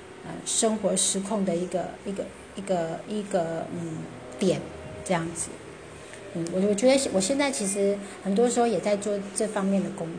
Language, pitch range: Chinese, 185-220 Hz